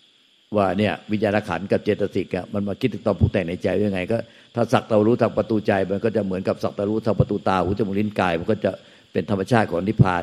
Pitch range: 100-115 Hz